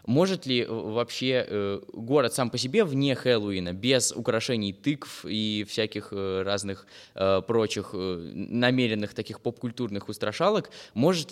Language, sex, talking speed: Russian, male, 110 wpm